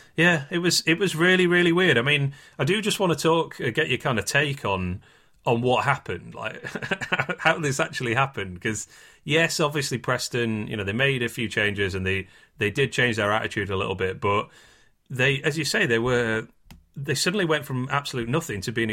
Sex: male